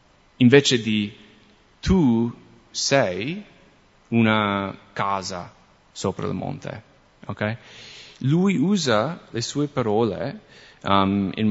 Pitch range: 105-135 Hz